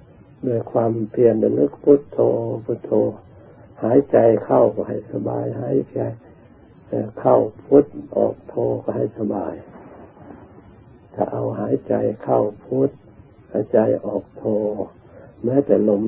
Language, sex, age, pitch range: Thai, male, 60-79, 100-120 Hz